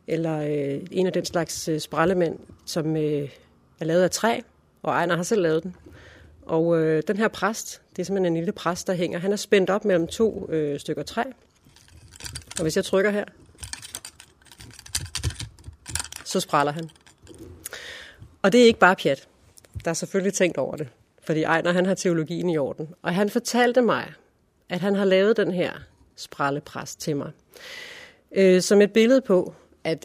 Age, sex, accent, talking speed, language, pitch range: 40-59, female, native, 175 wpm, Danish, 160-200 Hz